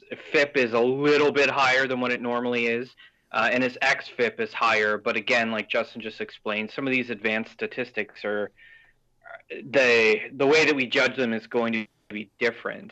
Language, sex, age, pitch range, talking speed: English, male, 20-39, 110-130 Hz, 190 wpm